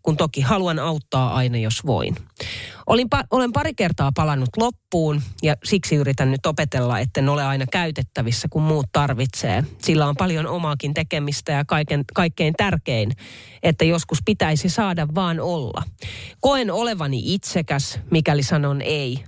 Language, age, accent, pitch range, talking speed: Finnish, 30-49, native, 130-175 Hz, 135 wpm